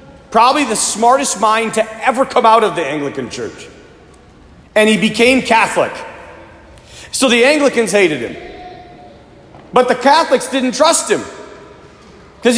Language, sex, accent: English, male, American